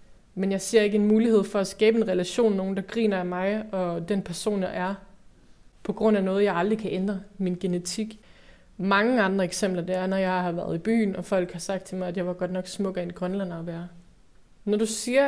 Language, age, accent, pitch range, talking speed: Danish, 20-39, native, 175-205 Hz, 245 wpm